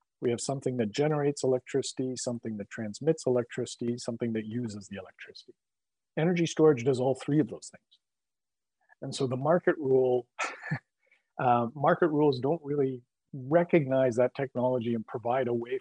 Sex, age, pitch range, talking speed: male, 50-69, 120-150 Hz, 150 wpm